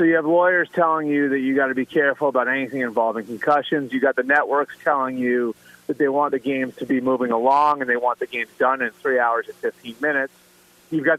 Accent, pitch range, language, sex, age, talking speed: American, 130-165 Hz, English, male, 30-49, 240 wpm